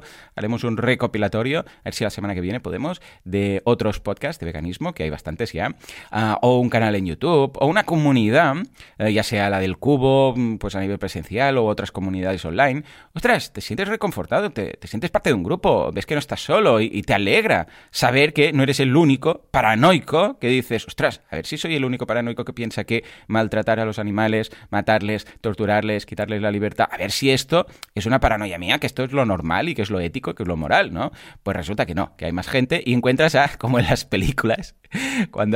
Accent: Spanish